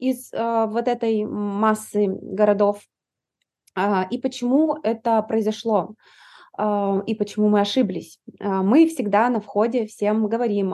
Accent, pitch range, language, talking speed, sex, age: native, 205-245 Hz, Russian, 105 wpm, female, 20-39